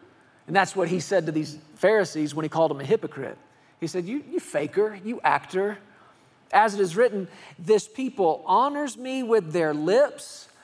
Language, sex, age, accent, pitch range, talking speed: English, male, 40-59, American, 155-195 Hz, 180 wpm